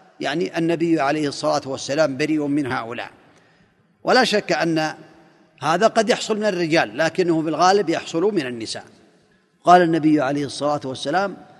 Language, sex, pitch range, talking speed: Arabic, male, 155-180 Hz, 135 wpm